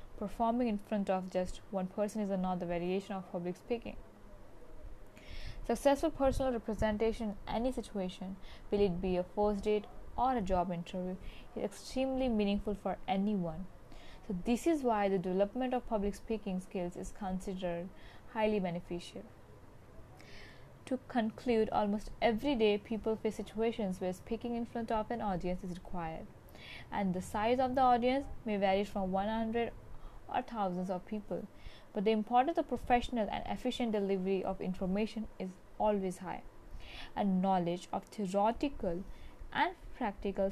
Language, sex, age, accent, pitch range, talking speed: English, female, 20-39, Indian, 185-230 Hz, 145 wpm